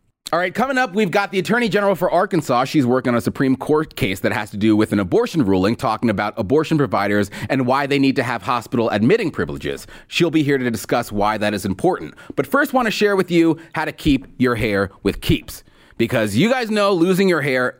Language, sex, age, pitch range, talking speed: English, male, 30-49, 115-180 Hz, 235 wpm